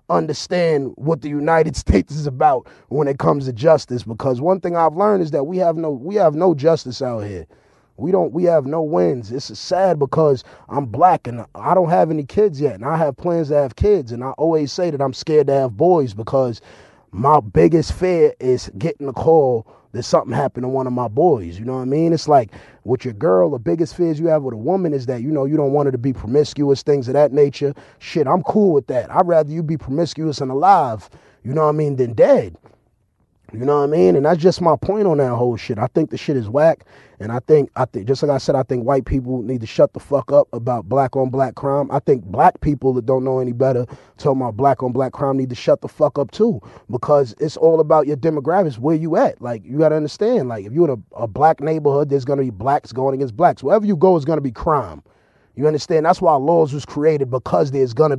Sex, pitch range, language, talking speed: male, 130-160 Hz, English, 250 wpm